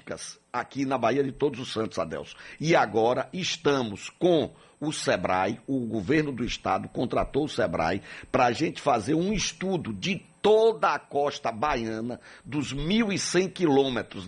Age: 60-79